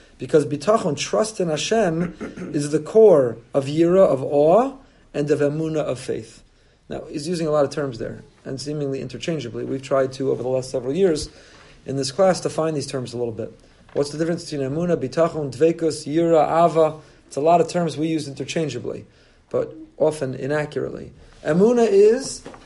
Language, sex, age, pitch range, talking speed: English, male, 40-59, 145-185 Hz, 180 wpm